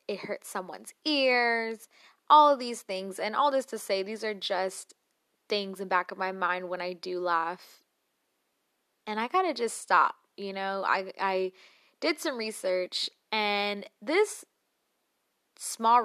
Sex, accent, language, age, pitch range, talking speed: female, American, English, 20-39, 185-220 Hz, 155 wpm